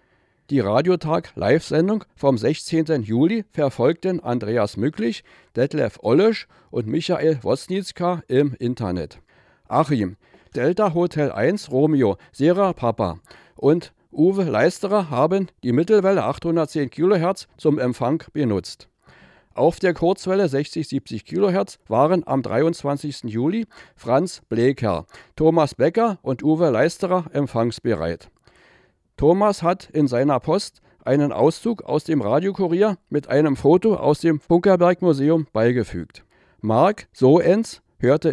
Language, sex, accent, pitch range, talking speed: German, male, German, 125-175 Hz, 110 wpm